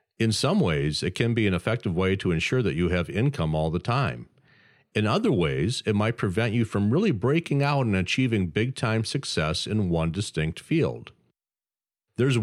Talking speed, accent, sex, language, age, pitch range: 185 wpm, American, male, English, 40-59, 90-125 Hz